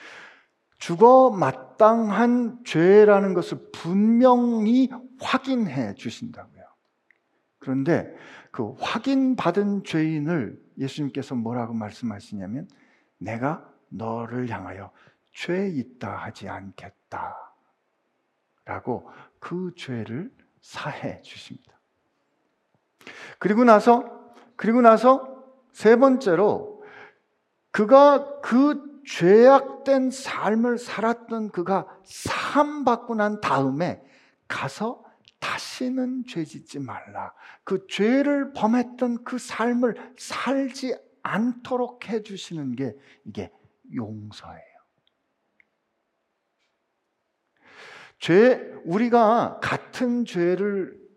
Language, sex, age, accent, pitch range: Korean, male, 50-69, native, 160-245 Hz